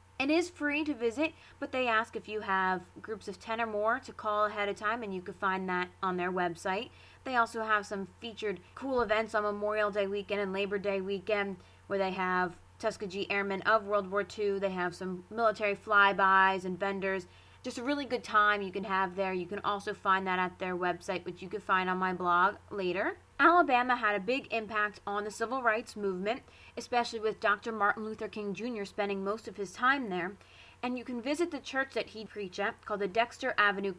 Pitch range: 195-235 Hz